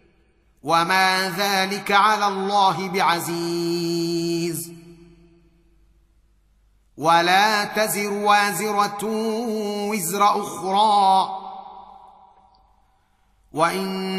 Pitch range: 185-205 Hz